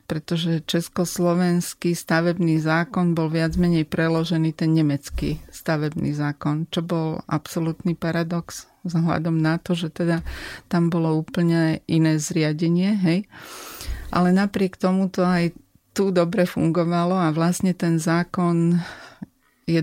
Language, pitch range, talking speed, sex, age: Slovak, 165-190 Hz, 120 wpm, female, 30-49